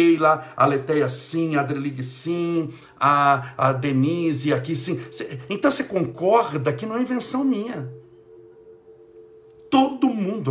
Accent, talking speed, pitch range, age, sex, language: Brazilian, 120 wpm, 130-195 Hz, 60-79, male, Portuguese